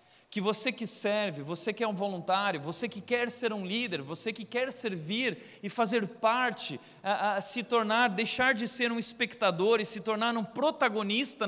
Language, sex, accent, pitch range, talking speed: Portuguese, male, Brazilian, 175-235 Hz, 195 wpm